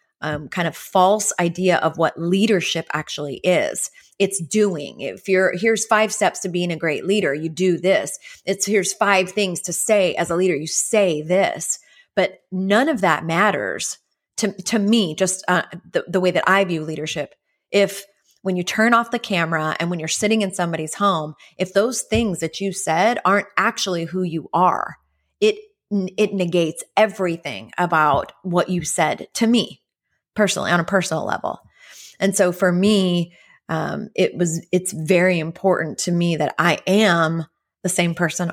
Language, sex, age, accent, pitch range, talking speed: English, female, 30-49, American, 165-200 Hz, 175 wpm